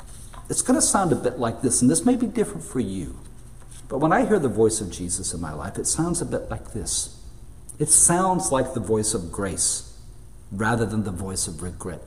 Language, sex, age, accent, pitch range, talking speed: English, male, 50-69, American, 95-120 Hz, 225 wpm